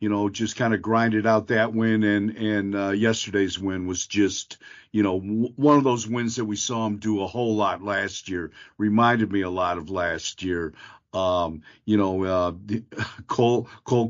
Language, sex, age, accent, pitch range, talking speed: English, male, 50-69, American, 105-125 Hz, 200 wpm